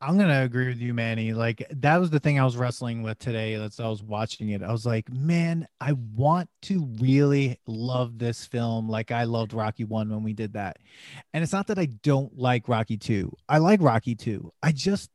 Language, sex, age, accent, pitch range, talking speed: English, male, 30-49, American, 125-165 Hz, 220 wpm